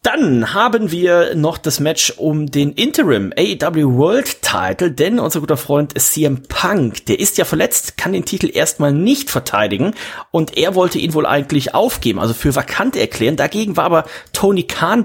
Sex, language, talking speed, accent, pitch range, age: male, German, 180 wpm, German, 115-155 Hz, 30-49